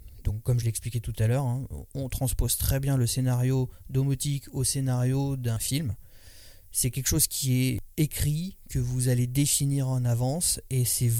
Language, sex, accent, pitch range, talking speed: French, male, French, 100-130 Hz, 170 wpm